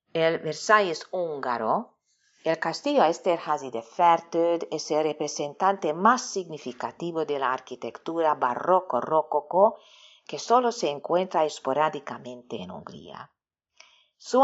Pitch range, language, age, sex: 140-190 Hz, Spanish, 40-59, female